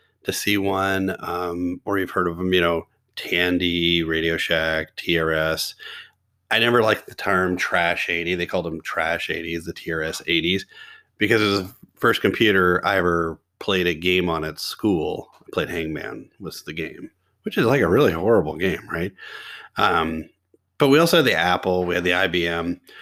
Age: 30-49